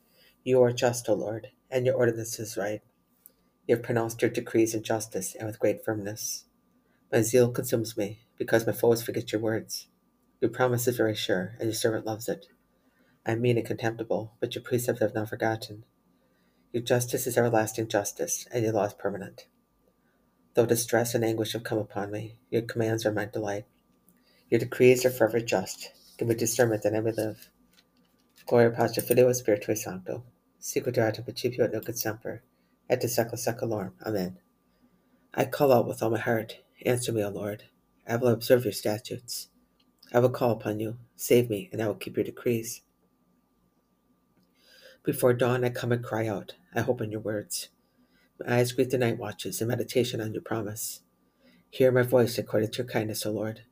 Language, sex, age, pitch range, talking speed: English, female, 40-59, 110-120 Hz, 170 wpm